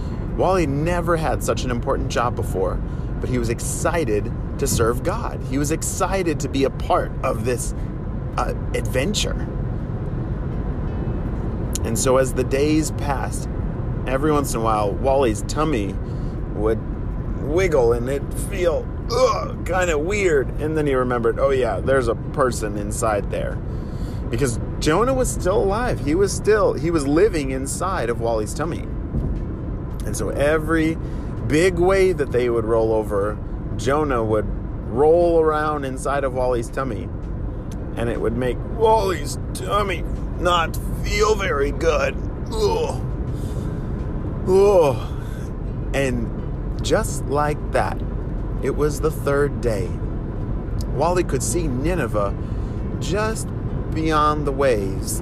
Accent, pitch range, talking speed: American, 110-145 Hz, 130 wpm